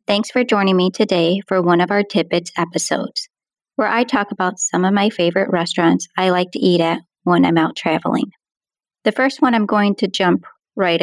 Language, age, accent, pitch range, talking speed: English, 30-49, American, 175-215 Hz, 200 wpm